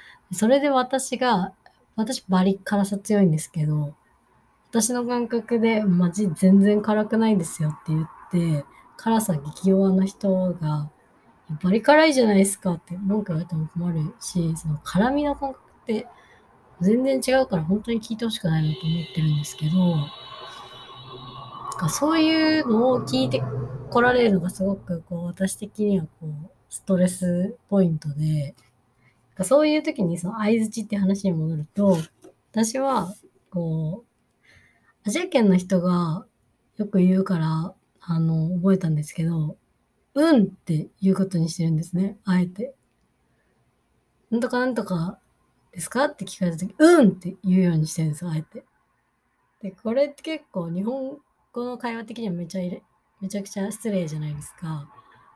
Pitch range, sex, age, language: 165-225 Hz, female, 20-39, English